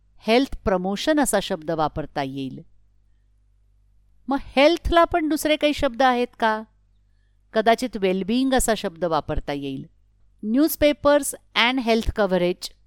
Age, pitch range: 50-69, 155-250 Hz